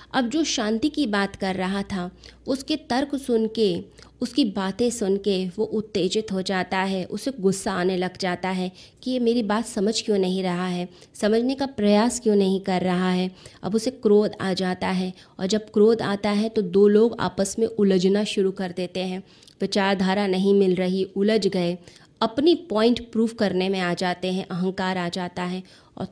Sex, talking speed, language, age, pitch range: female, 195 wpm, Hindi, 20-39, 185-220 Hz